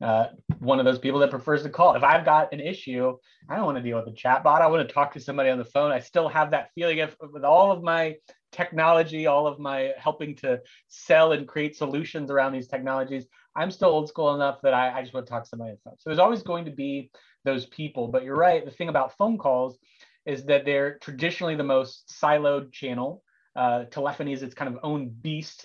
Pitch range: 125-150 Hz